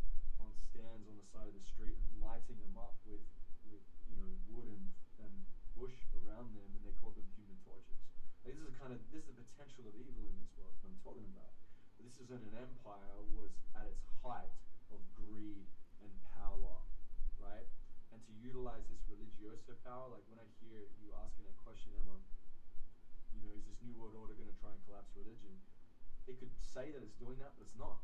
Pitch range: 100-115 Hz